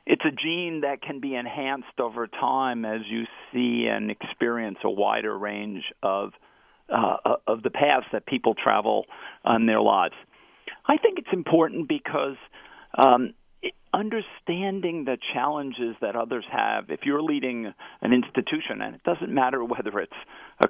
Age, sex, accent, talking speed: 50-69, male, American, 150 wpm